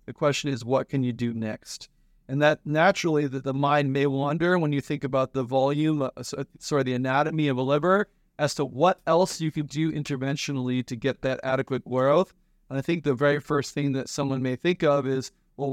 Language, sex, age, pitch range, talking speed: English, male, 40-59, 125-145 Hz, 210 wpm